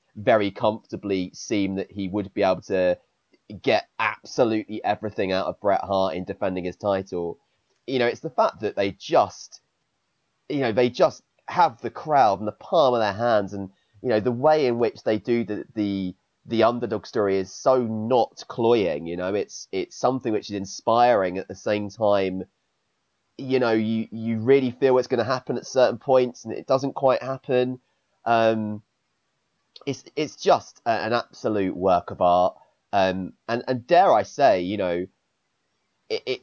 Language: English